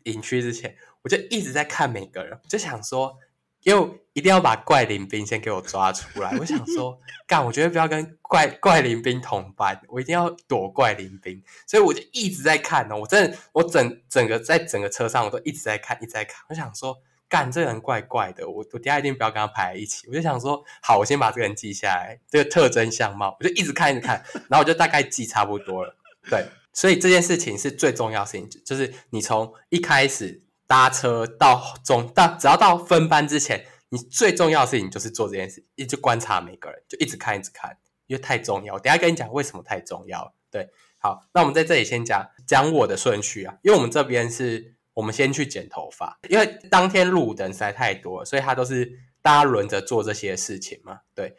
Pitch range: 115-170 Hz